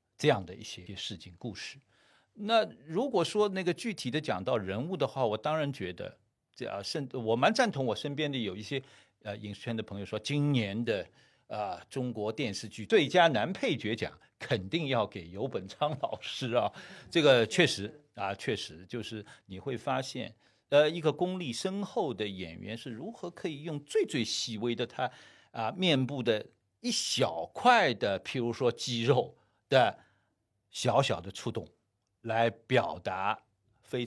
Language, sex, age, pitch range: Chinese, male, 50-69, 105-160 Hz